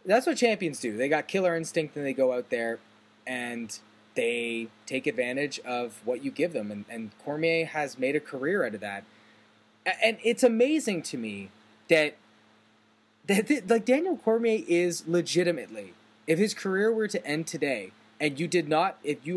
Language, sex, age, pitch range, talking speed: English, male, 20-39, 115-180 Hz, 180 wpm